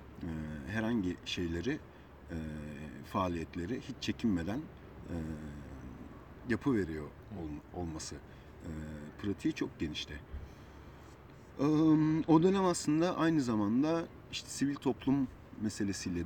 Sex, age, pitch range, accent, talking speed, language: male, 50-69, 80-110 Hz, native, 75 wpm, Turkish